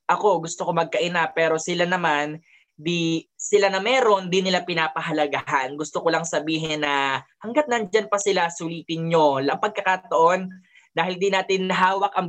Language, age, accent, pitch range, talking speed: Filipino, 20-39, native, 155-185 Hz, 145 wpm